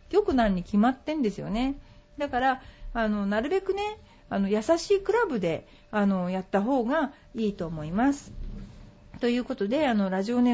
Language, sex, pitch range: Japanese, female, 195-255 Hz